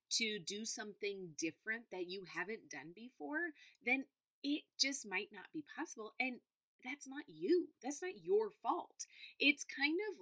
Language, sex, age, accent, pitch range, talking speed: English, female, 30-49, American, 215-355 Hz, 160 wpm